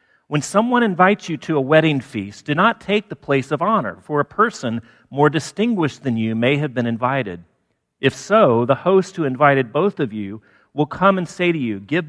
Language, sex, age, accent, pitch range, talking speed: English, male, 40-59, American, 110-165 Hz, 210 wpm